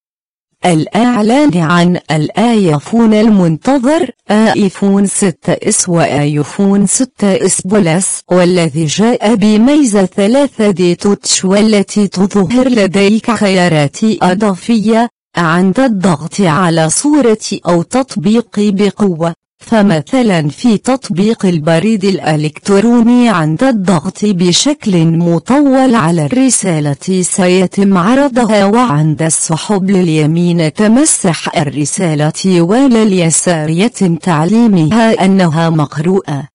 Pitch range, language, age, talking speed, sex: 170-225 Hz, Arabic, 40-59, 80 wpm, female